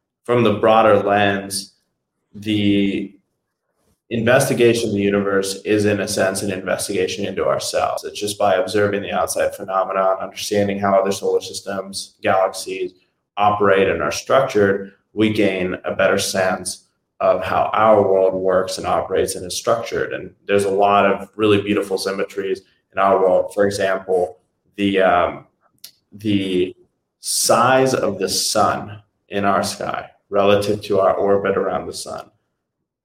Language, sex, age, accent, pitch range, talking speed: English, male, 20-39, American, 95-105 Hz, 145 wpm